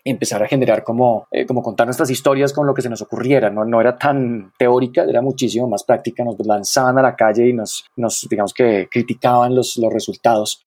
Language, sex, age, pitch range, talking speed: Spanish, male, 20-39, 115-135 Hz, 215 wpm